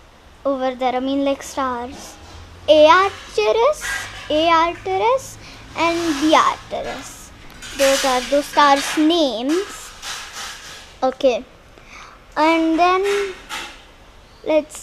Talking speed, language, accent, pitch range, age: 80 wpm, English, Indian, 275-370 Hz, 10-29